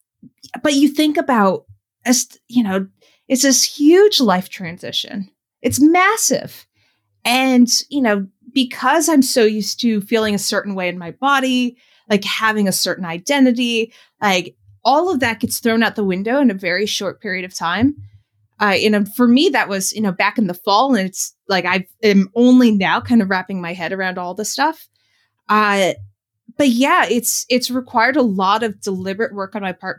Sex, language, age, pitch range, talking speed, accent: female, English, 30-49, 190-245 Hz, 185 wpm, American